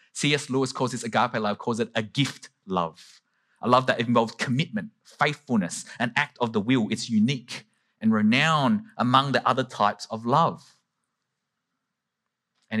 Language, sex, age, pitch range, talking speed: English, male, 20-39, 105-155 Hz, 155 wpm